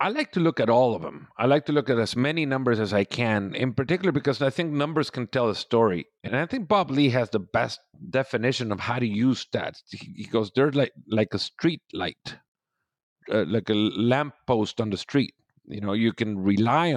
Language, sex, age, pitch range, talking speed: English, male, 50-69, 115-145 Hz, 225 wpm